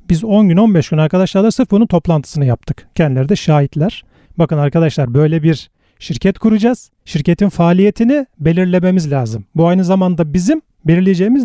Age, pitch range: 40-59, 150-195 Hz